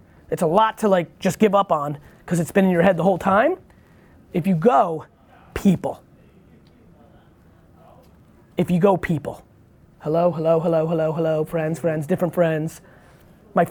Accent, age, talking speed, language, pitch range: American, 20-39, 160 wpm, English, 160-200 Hz